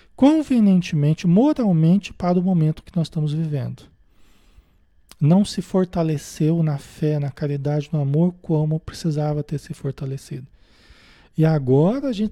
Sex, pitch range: male, 160-215 Hz